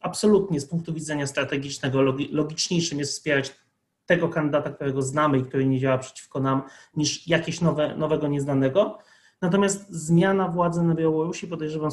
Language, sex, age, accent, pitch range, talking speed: Polish, male, 30-49, native, 135-165 Hz, 140 wpm